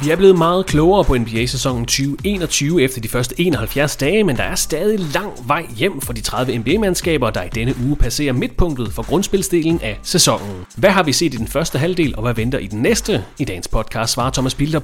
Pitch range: 115-170 Hz